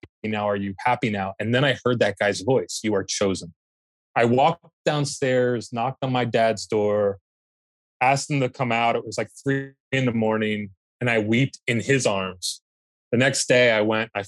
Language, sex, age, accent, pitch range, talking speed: English, male, 20-39, American, 105-135 Hz, 200 wpm